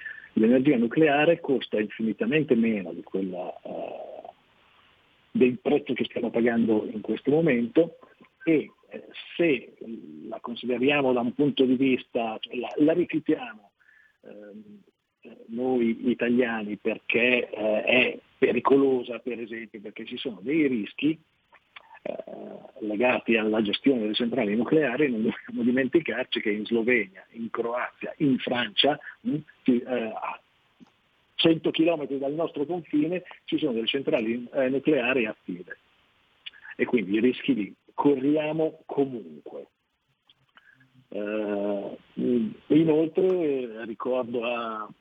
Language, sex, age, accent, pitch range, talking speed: Italian, male, 50-69, native, 115-150 Hz, 110 wpm